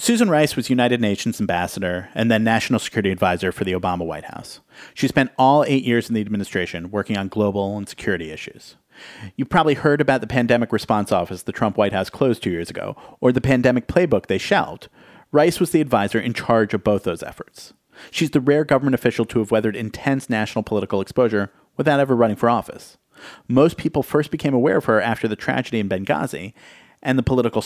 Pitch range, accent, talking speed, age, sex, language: 100-130 Hz, American, 205 wpm, 40-59, male, English